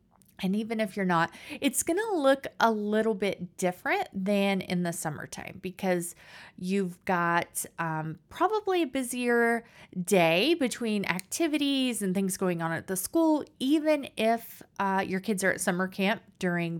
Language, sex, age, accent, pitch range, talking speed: English, female, 30-49, American, 185-240 Hz, 155 wpm